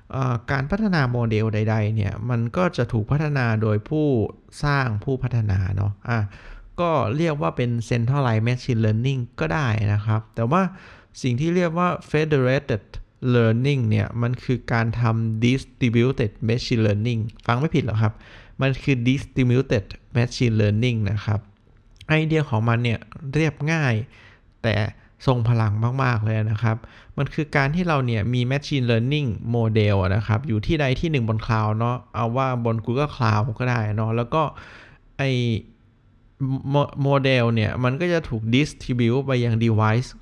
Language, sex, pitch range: Thai, male, 110-135 Hz